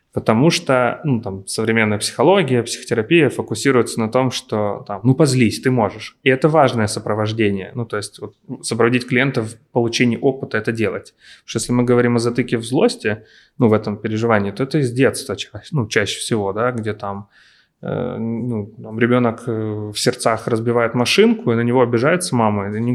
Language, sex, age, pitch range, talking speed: Ukrainian, male, 20-39, 110-130 Hz, 185 wpm